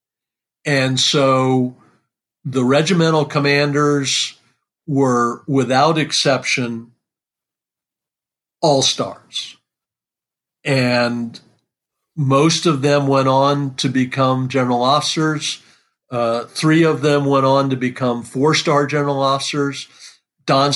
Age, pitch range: 50-69, 125-145 Hz